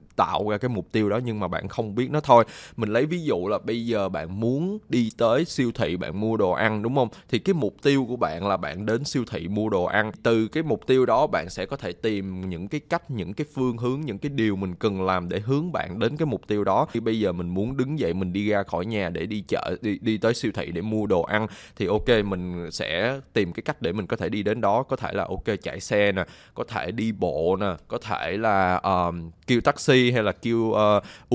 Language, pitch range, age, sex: English, 95-125 Hz, 20-39, male